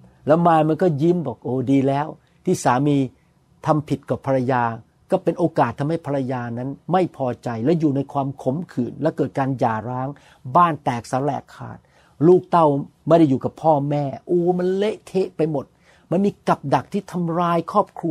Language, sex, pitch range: Thai, male, 140-175 Hz